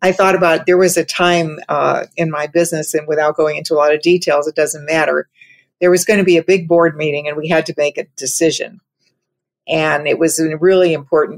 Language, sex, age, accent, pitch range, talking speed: English, female, 50-69, American, 150-175 Hz, 230 wpm